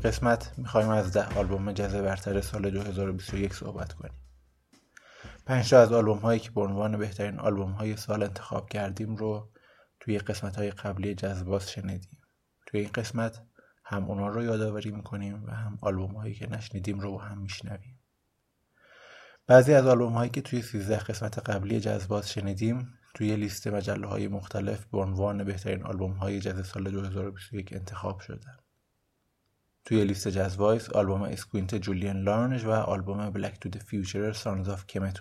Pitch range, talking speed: 100-110 Hz, 155 wpm